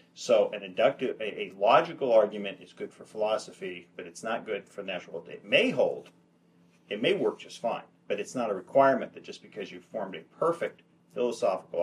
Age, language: 40-59, English